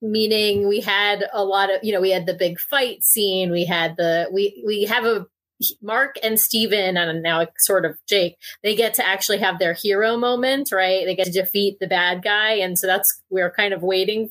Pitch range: 185-215 Hz